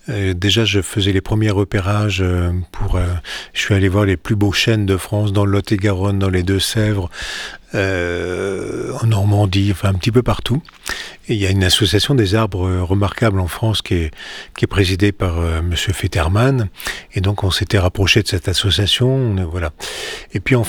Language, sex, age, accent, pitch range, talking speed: French, male, 40-59, French, 95-115 Hz, 185 wpm